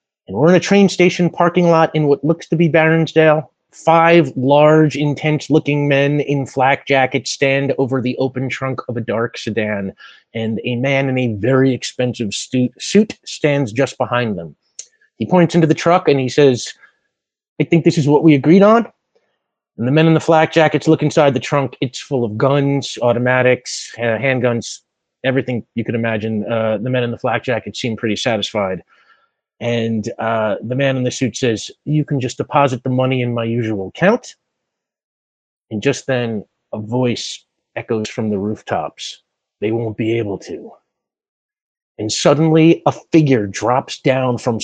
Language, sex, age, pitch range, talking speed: English, male, 30-49, 120-150 Hz, 175 wpm